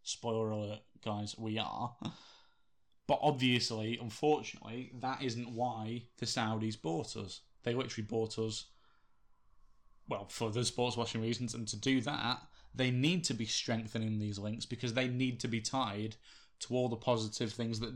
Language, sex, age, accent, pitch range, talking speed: English, male, 10-29, British, 110-125 Hz, 160 wpm